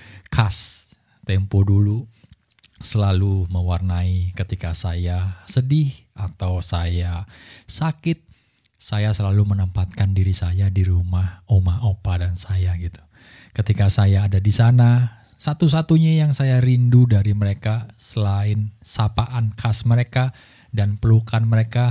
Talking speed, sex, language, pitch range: 110 wpm, male, Indonesian, 95-115 Hz